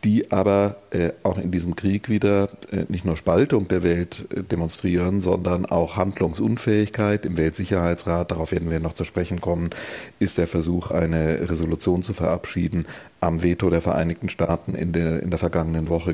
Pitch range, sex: 85-100 Hz, male